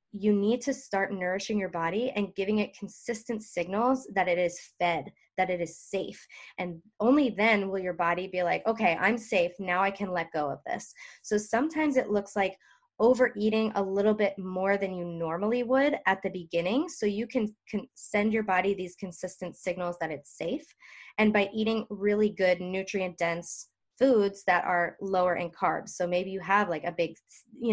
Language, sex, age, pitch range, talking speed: English, female, 20-39, 175-210 Hz, 190 wpm